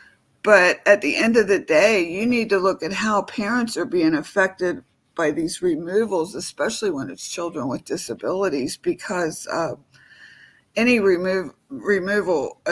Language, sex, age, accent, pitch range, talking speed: English, female, 50-69, American, 180-215 Hz, 145 wpm